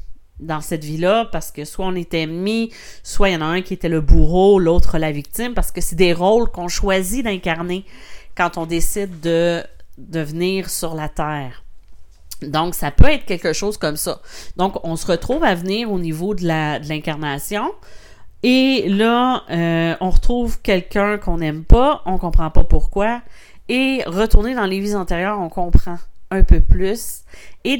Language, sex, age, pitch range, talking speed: French, female, 40-59, 165-210 Hz, 180 wpm